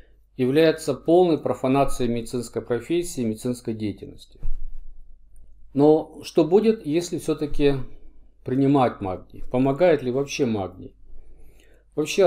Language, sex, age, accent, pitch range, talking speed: Russian, male, 50-69, native, 120-150 Hz, 95 wpm